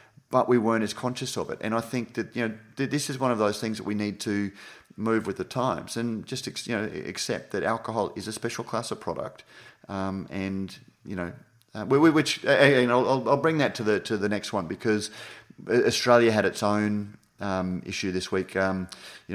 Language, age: English, 30-49